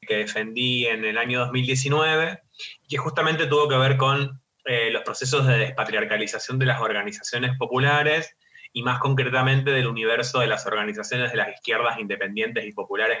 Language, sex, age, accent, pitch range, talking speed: Spanish, male, 20-39, Argentinian, 115-145 Hz, 160 wpm